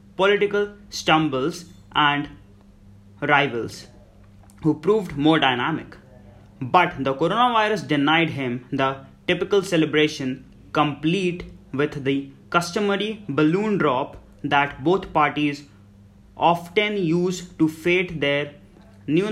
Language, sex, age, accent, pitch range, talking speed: English, male, 20-39, Indian, 130-165 Hz, 95 wpm